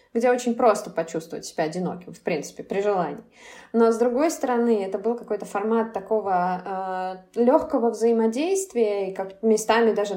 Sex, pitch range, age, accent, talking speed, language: female, 185-225 Hz, 20-39, native, 155 wpm, Russian